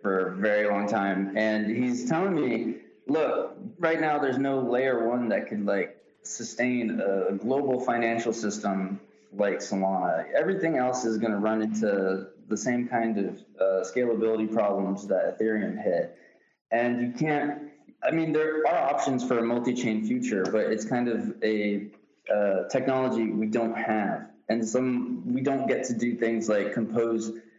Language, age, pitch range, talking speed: English, 20-39, 105-125 Hz, 160 wpm